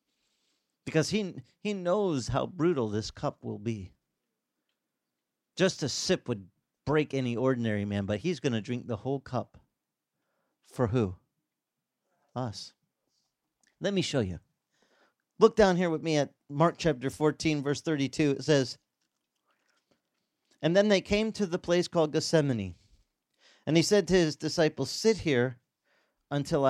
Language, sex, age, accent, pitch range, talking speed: English, male, 40-59, American, 115-155 Hz, 145 wpm